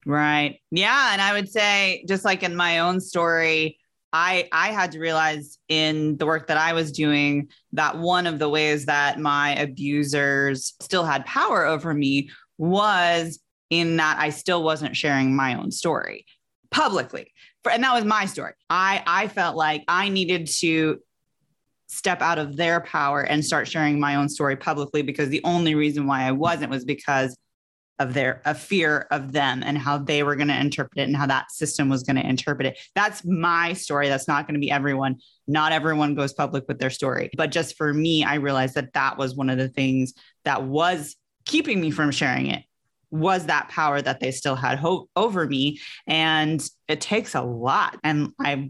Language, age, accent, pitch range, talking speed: English, 20-39, American, 145-170 Hz, 195 wpm